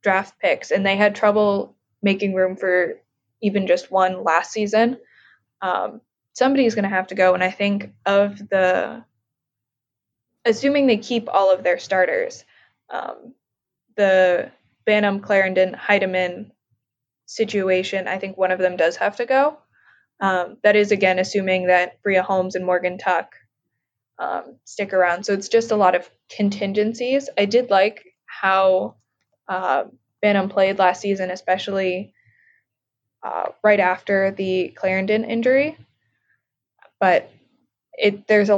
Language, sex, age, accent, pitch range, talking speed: English, female, 20-39, American, 185-210 Hz, 135 wpm